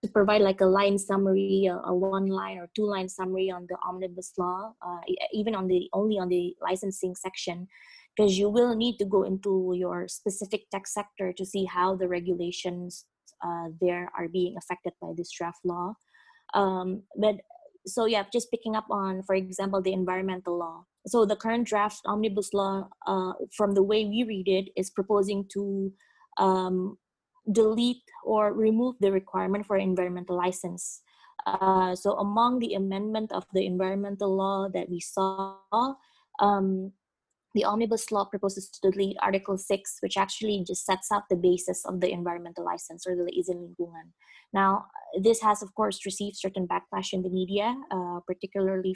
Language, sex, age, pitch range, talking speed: English, female, 20-39, 185-210 Hz, 170 wpm